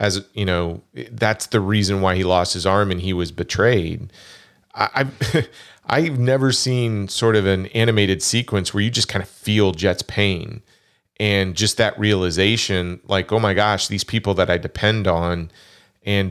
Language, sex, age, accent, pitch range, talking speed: English, male, 30-49, American, 95-110 Hz, 175 wpm